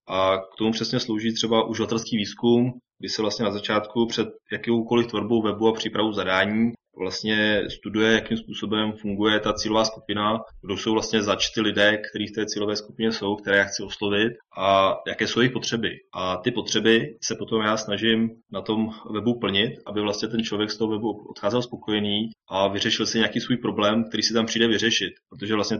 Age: 20-39